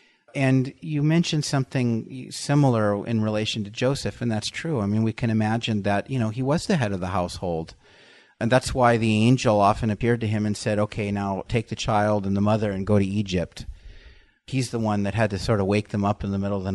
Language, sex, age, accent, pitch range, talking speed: English, male, 30-49, American, 105-125 Hz, 235 wpm